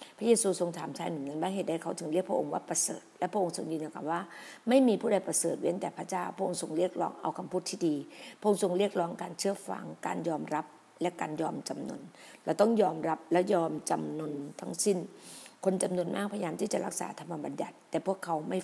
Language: Thai